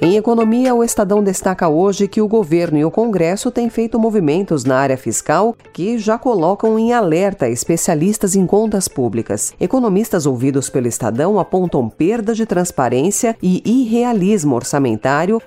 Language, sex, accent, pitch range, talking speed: Portuguese, female, Brazilian, 140-210 Hz, 145 wpm